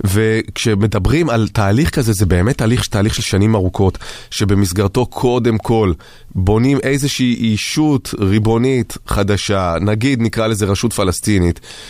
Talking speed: 115 wpm